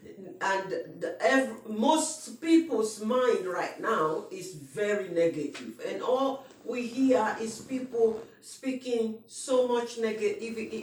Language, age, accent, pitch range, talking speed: English, 50-69, Nigerian, 215-255 Hz, 115 wpm